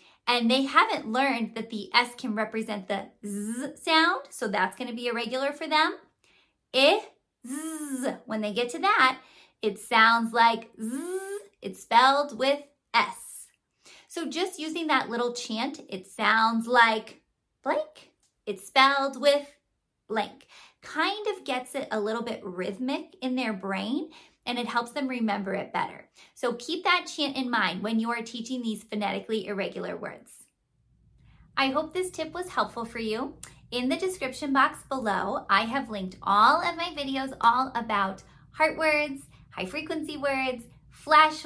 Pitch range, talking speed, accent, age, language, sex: 225-295 Hz, 155 wpm, American, 30-49, English, female